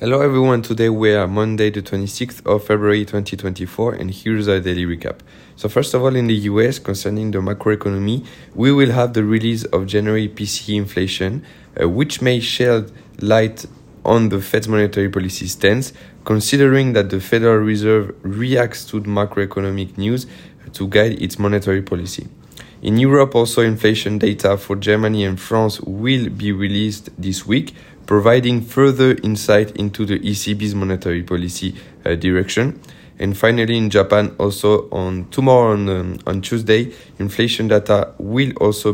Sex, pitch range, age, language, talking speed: male, 100-115 Hz, 20-39, English, 150 wpm